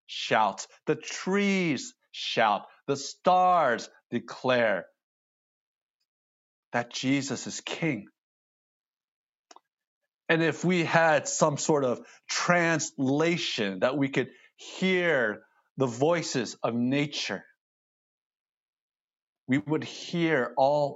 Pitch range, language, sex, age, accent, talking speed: 115-160 Hz, English, male, 50-69, American, 90 wpm